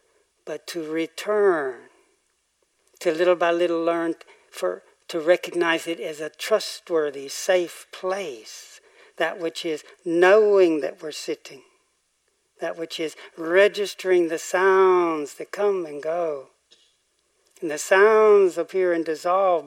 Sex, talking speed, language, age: male, 120 wpm, English, 60-79